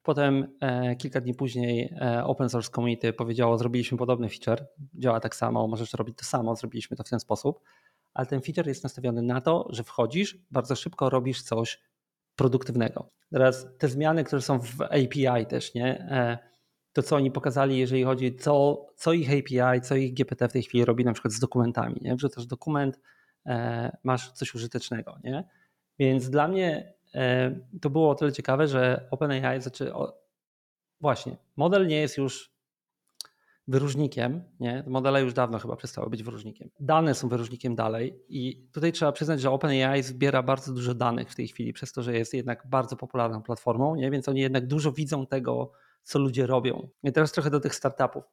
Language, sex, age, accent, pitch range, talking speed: Polish, male, 30-49, native, 120-145 Hz, 180 wpm